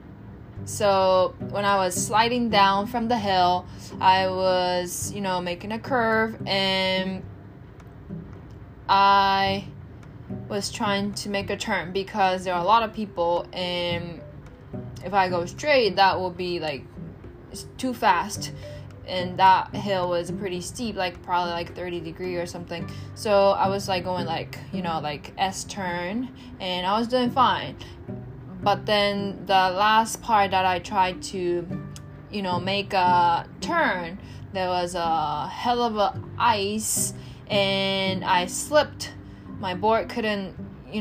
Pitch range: 175-200 Hz